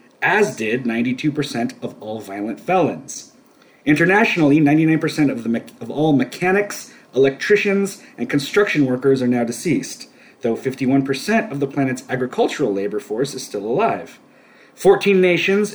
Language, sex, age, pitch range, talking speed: English, male, 30-49, 125-165 Hz, 125 wpm